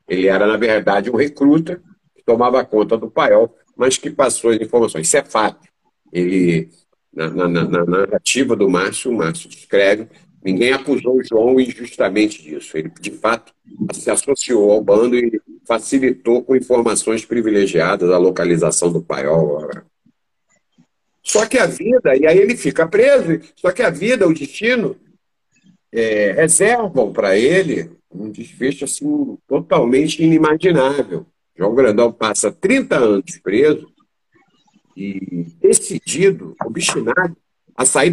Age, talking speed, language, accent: 50-69, 130 wpm, Portuguese, Brazilian